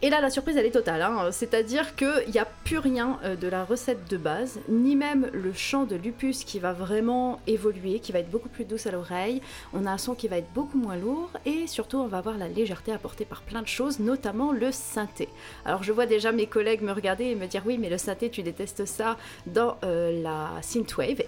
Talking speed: 235 wpm